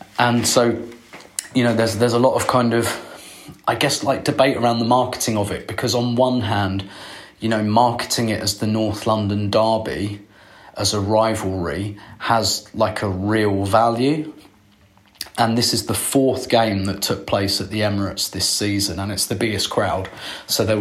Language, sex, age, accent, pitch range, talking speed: English, male, 30-49, British, 100-115 Hz, 180 wpm